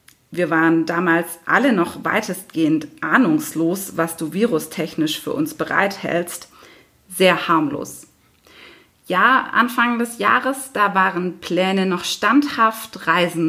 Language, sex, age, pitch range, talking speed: German, female, 30-49, 180-225 Hz, 110 wpm